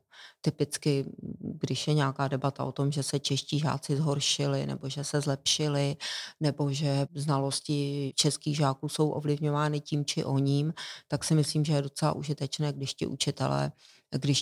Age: 40-59